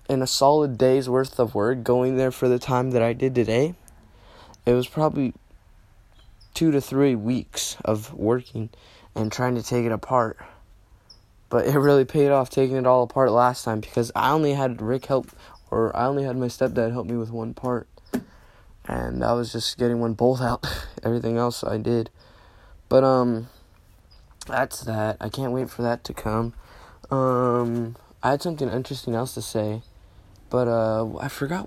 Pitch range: 100-125 Hz